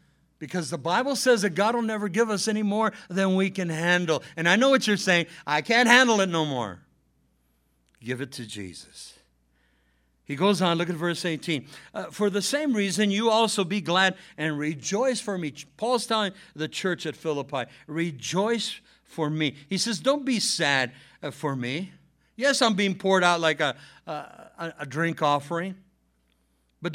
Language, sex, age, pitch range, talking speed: English, male, 60-79, 130-215 Hz, 180 wpm